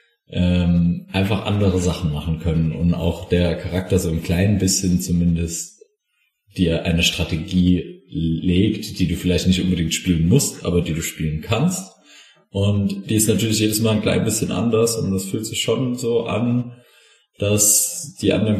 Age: 30-49